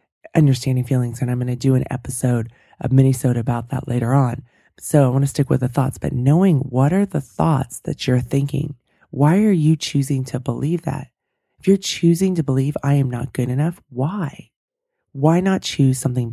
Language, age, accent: English, 20-39, American